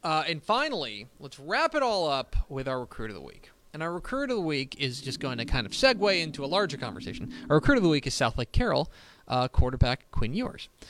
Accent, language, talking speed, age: American, English, 235 wpm, 20-39